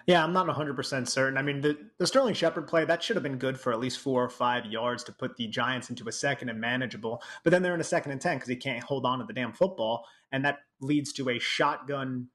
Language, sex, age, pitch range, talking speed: English, male, 30-49, 125-145 Hz, 270 wpm